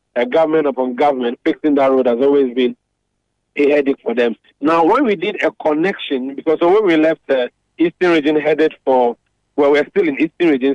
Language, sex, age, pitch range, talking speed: English, male, 50-69, 135-160 Hz, 205 wpm